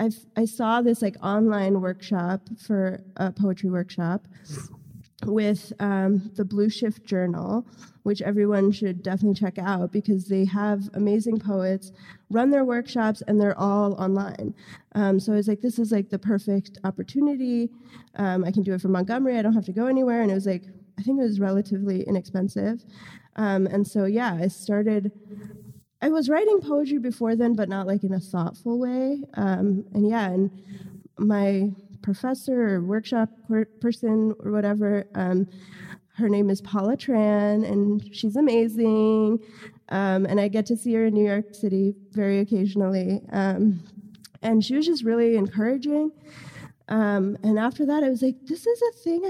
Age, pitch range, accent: 20-39, 195-230 Hz, American